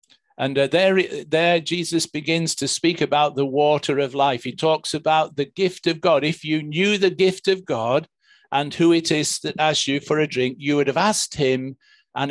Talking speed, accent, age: 210 wpm, British, 50-69